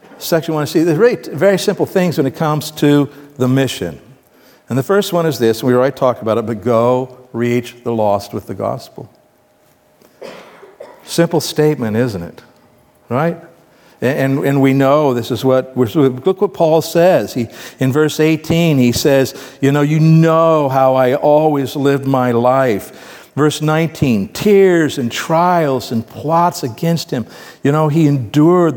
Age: 60-79